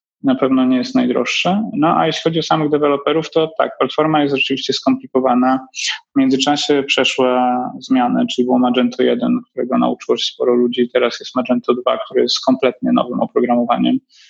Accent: native